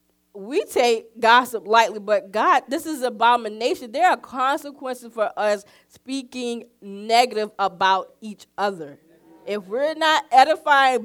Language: English